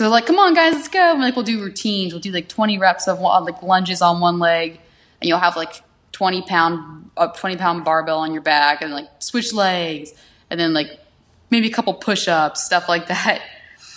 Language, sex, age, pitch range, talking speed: English, female, 20-39, 160-205 Hz, 205 wpm